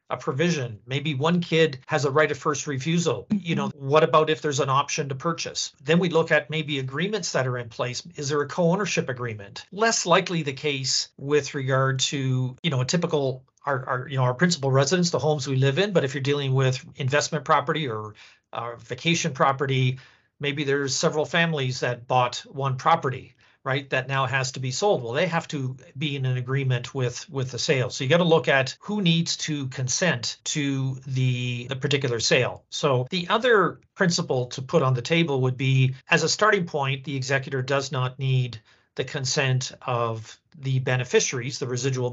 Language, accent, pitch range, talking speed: English, American, 130-155 Hz, 200 wpm